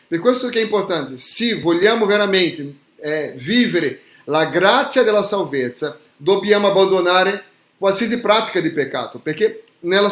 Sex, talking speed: male, 130 wpm